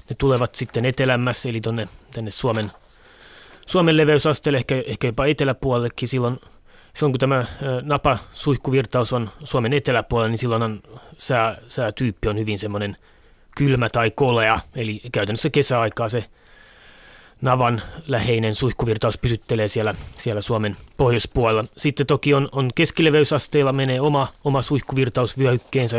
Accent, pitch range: native, 110-135 Hz